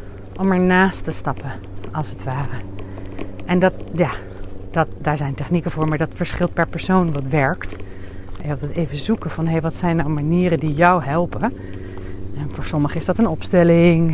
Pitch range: 125-185 Hz